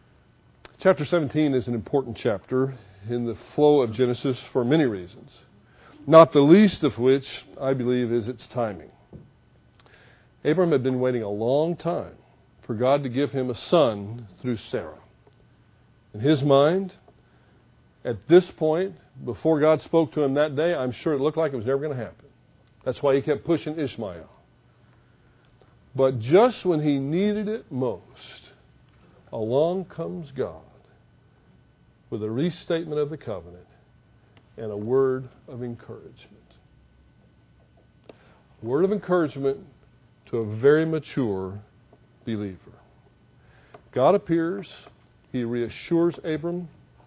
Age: 50-69